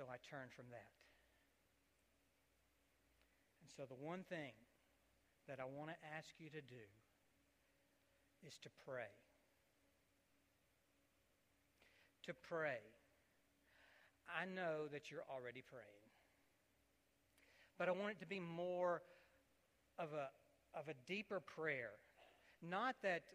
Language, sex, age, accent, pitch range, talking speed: English, male, 60-79, American, 155-190 Hz, 115 wpm